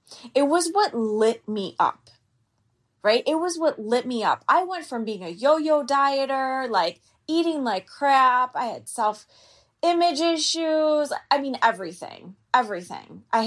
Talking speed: 145 wpm